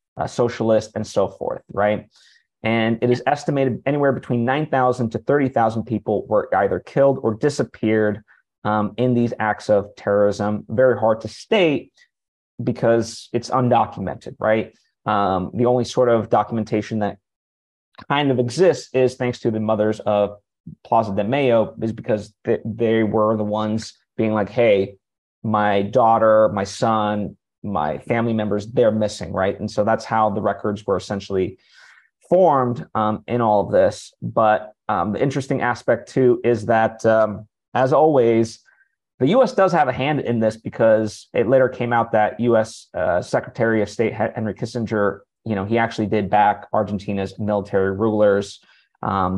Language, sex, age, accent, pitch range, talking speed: English, male, 30-49, American, 105-120 Hz, 155 wpm